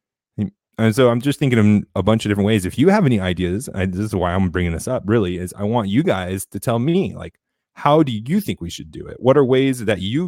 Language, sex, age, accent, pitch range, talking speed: English, male, 30-49, American, 95-125 Hz, 275 wpm